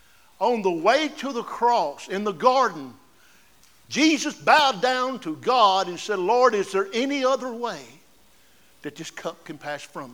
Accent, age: American, 60-79